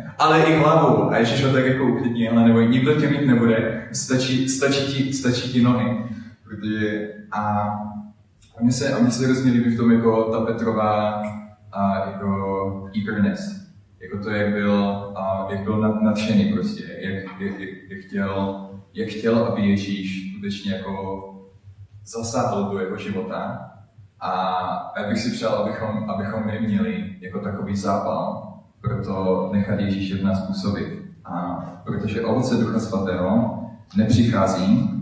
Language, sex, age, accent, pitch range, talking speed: Czech, male, 20-39, native, 95-115 Hz, 140 wpm